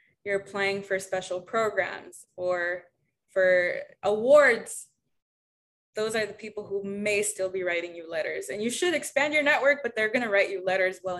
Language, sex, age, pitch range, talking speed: English, female, 20-39, 190-240 Hz, 170 wpm